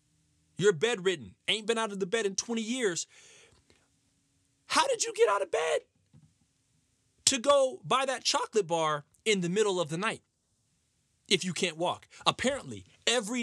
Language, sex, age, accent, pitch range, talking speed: English, male, 30-49, American, 155-235 Hz, 160 wpm